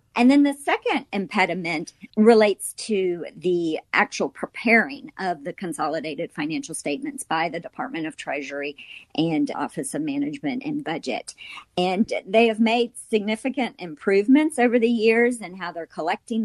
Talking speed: 140 wpm